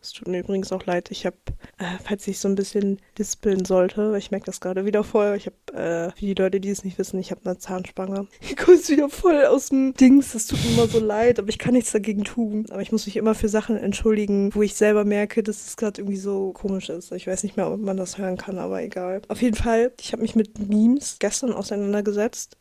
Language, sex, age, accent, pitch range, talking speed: German, female, 20-39, German, 195-225 Hz, 255 wpm